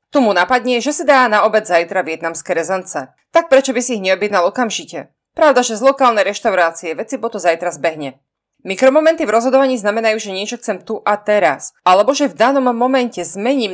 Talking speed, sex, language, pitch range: 190 wpm, female, Slovak, 175-245 Hz